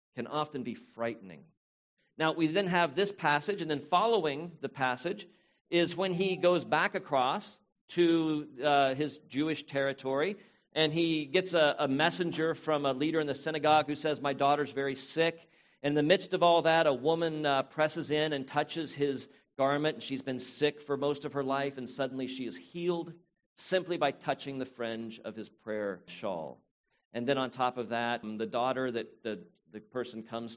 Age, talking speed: 50-69, 185 wpm